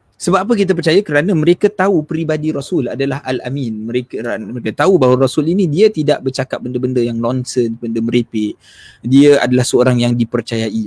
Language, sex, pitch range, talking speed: Malay, male, 115-155 Hz, 165 wpm